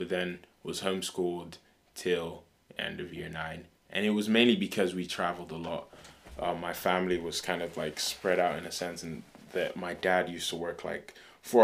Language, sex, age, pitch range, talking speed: English, male, 20-39, 85-90 Hz, 200 wpm